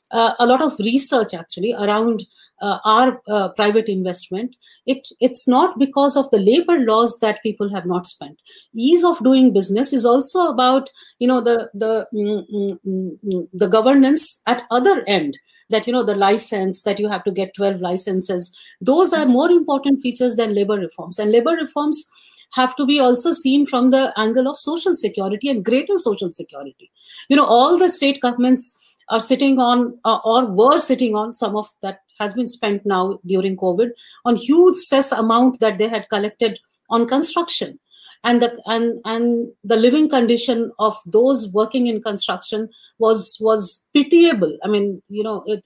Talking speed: 175 wpm